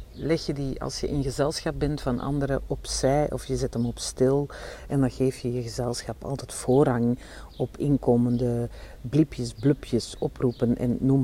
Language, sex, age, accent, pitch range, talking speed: Dutch, female, 50-69, Dutch, 120-145 Hz, 170 wpm